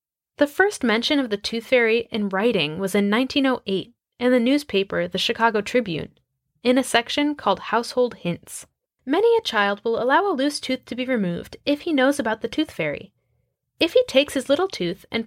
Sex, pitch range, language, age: female, 205-280 Hz, English, 10-29